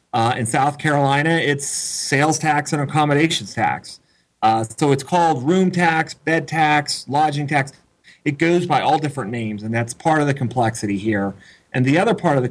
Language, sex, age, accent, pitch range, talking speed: English, male, 30-49, American, 120-150 Hz, 185 wpm